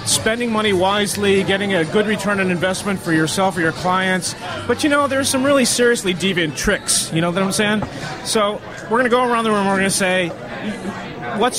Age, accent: 30-49, American